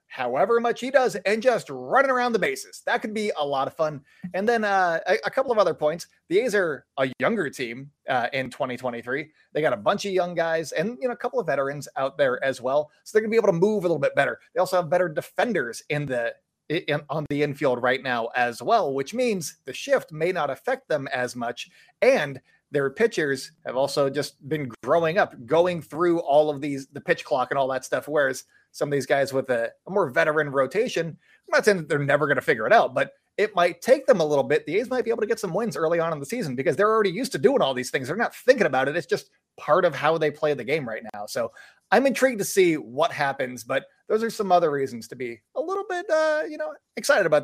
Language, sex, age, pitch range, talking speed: English, male, 30-49, 140-230 Hz, 255 wpm